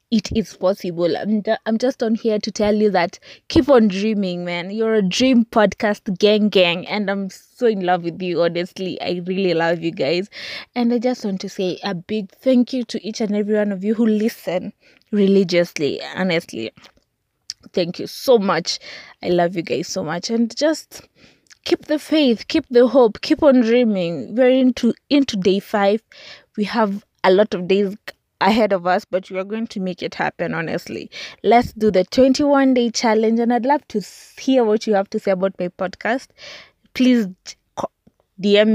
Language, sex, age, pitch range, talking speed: English, female, 20-39, 185-245 Hz, 185 wpm